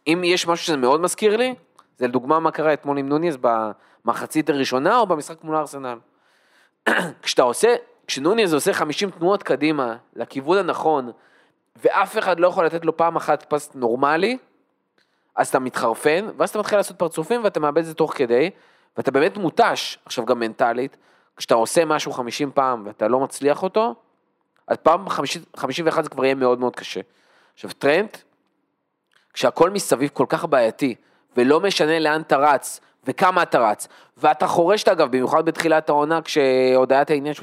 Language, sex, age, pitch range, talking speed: Hebrew, male, 20-39, 140-180 Hz, 160 wpm